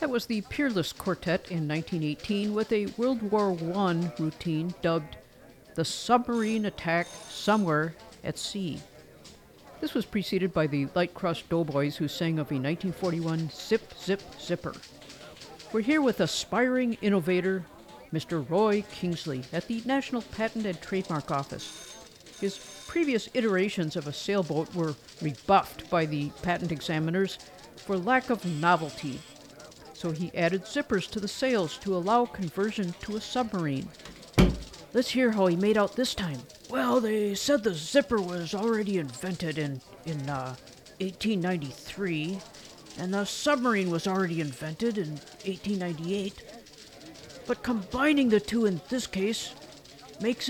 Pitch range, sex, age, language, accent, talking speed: 165-225 Hz, female, 50-69, English, American, 140 wpm